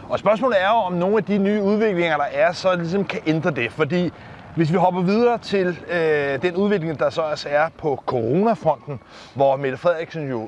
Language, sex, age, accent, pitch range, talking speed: Danish, male, 30-49, native, 150-200 Hz, 205 wpm